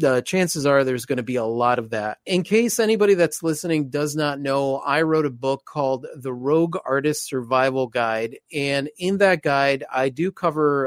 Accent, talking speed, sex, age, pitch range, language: American, 200 wpm, male, 30-49, 130-160 Hz, English